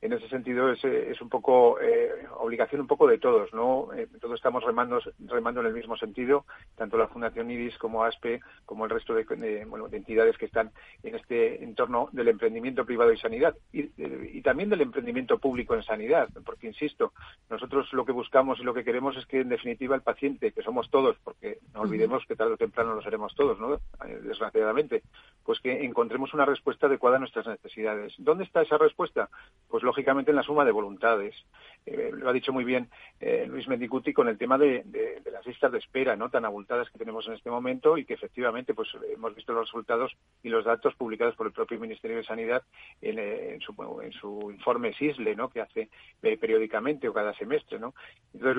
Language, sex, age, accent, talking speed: Spanish, male, 40-59, Spanish, 210 wpm